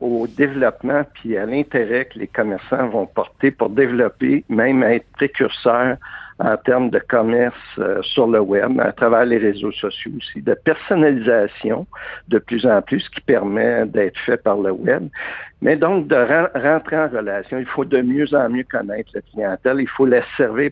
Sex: male